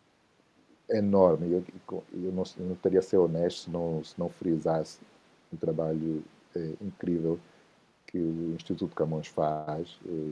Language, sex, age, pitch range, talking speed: Portuguese, male, 50-69, 80-95 Hz, 140 wpm